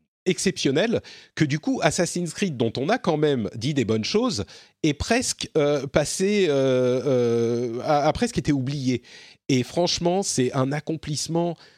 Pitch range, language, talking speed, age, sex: 125-175 Hz, French, 160 wpm, 40-59, male